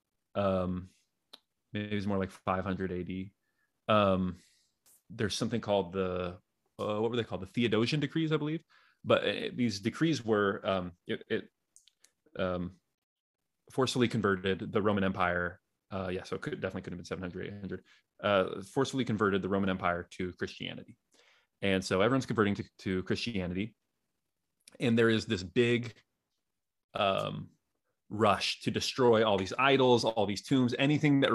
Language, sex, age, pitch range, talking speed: English, male, 30-49, 95-115 Hz, 150 wpm